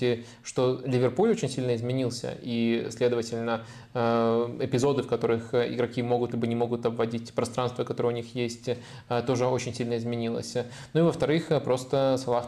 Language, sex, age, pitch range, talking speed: Russian, male, 20-39, 120-130 Hz, 145 wpm